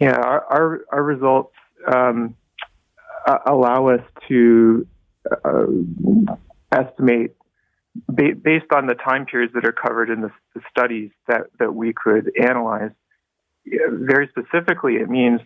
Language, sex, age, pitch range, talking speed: English, male, 30-49, 115-135 Hz, 120 wpm